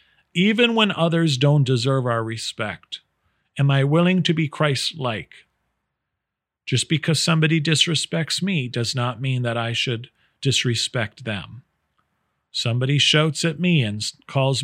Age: 40-59